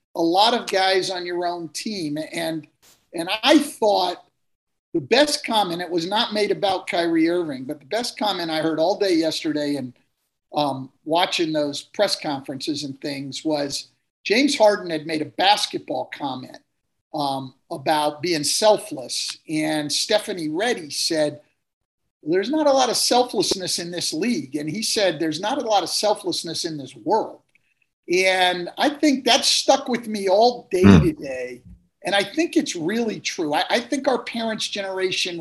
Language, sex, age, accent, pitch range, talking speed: English, male, 50-69, American, 155-225 Hz, 165 wpm